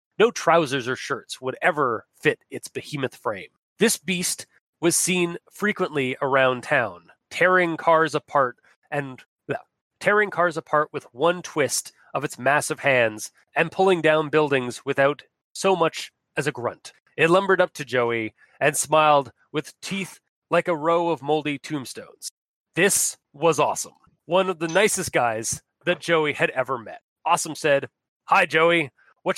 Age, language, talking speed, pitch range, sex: 30-49, English, 155 wpm, 140-190 Hz, male